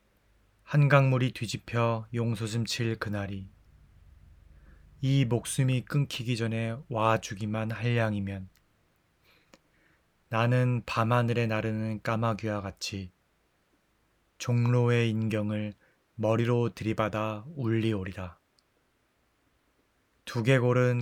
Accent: Korean